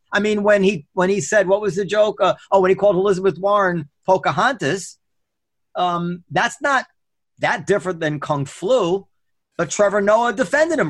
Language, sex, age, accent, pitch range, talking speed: English, male, 40-59, American, 155-220 Hz, 175 wpm